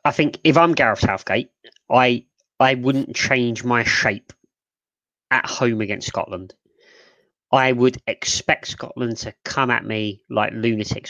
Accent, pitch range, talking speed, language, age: British, 100-125 Hz, 140 wpm, English, 20-39